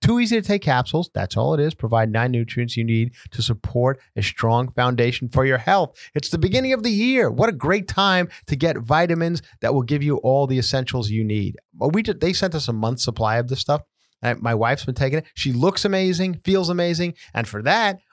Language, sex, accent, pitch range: English, male, American, 110-145 Hz